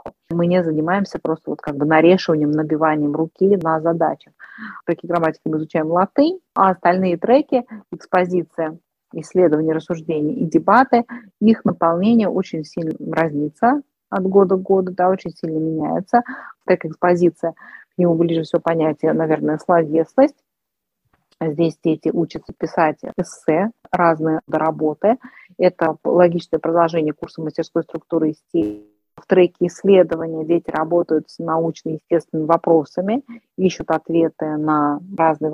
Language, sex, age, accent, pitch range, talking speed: Russian, female, 30-49, native, 160-190 Hz, 125 wpm